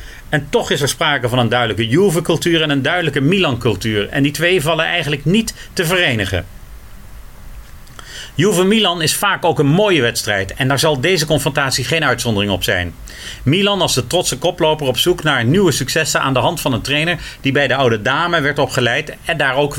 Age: 40-59